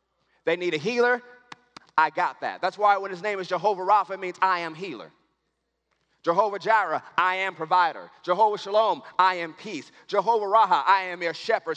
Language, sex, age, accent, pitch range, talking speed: English, male, 30-49, American, 200-260 Hz, 185 wpm